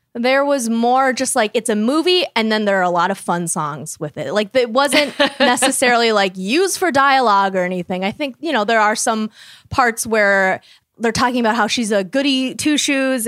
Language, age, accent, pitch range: English, 20-39, American, 195-275 Hz